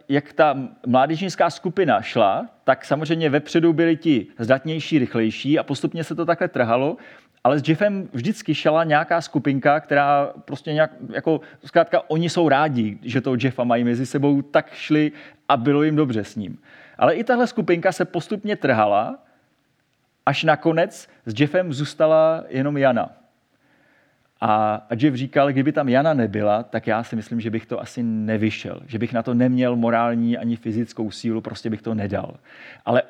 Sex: male